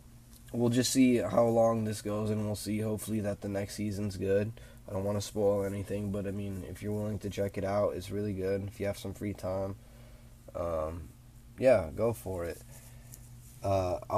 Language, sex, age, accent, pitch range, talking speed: English, male, 10-29, American, 100-120 Hz, 200 wpm